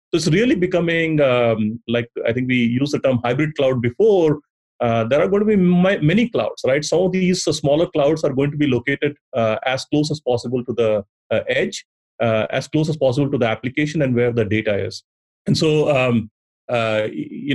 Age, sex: 30-49, male